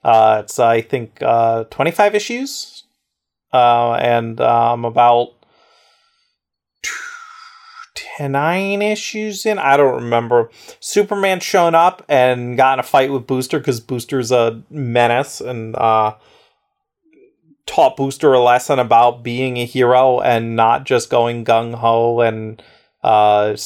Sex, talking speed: male, 125 wpm